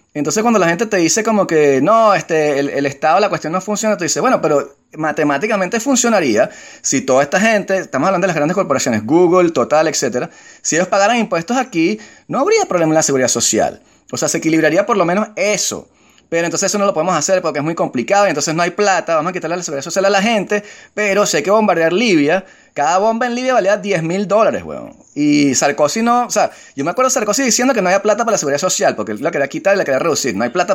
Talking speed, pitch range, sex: 250 wpm, 160-220 Hz, male